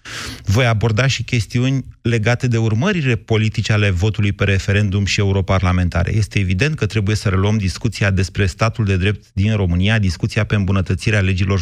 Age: 30-49